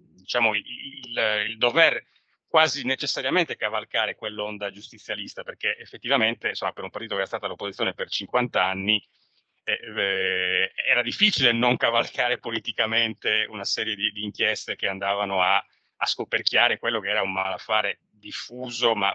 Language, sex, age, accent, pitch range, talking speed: Italian, male, 30-49, native, 100-135 Hz, 140 wpm